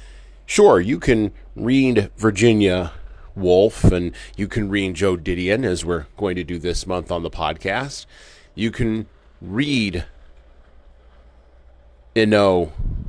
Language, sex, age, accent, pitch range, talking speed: English, male, 30-49, American, 75-105 Hz, 120 wpm